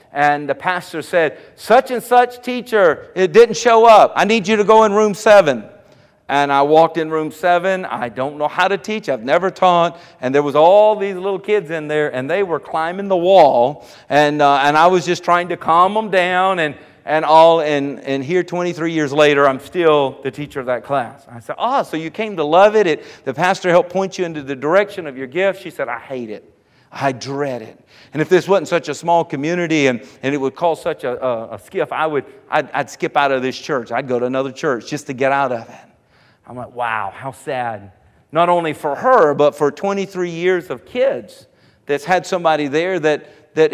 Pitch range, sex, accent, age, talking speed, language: 140-185 Hz, male, American, 50-69, 225 wpm, English